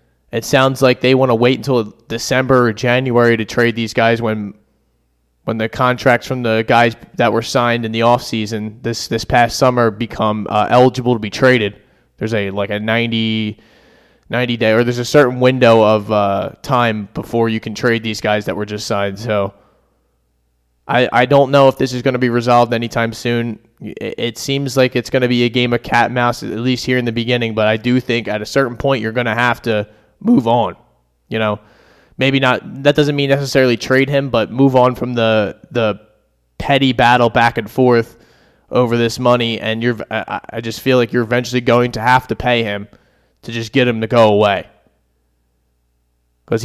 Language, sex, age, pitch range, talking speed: English, male, 20-39, 105-125 Hz, 205 wpm